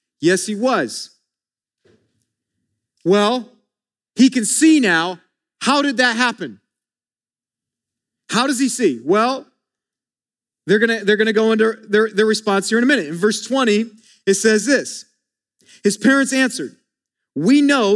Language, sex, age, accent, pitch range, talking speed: English, male, 40-59, American, 195-260 Hz, 140 wpm